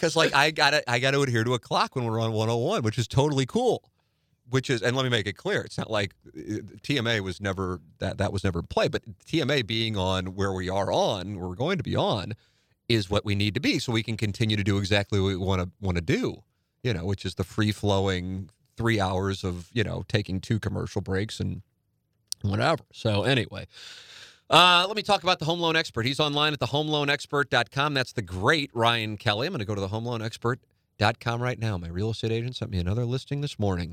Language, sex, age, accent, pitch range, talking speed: English, male, 30-49, American, 100-140 Hz, 220 wpm